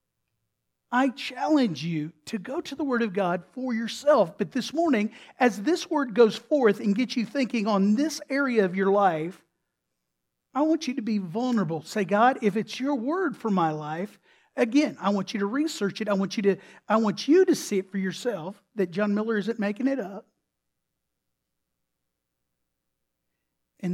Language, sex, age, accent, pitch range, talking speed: English, male, 50-69, American, 175-235 Hz, 180 wpm